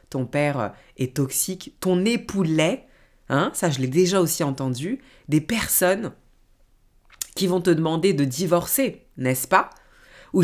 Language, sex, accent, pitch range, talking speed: French, female, French, 135-180 Hz, 145 wpm